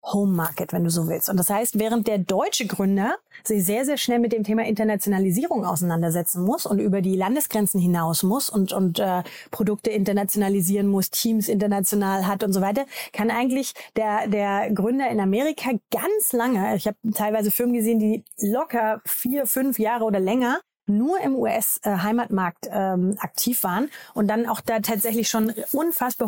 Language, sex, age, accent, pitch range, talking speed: German, female, 30-49, German, 195-240 Hz, 170 wpm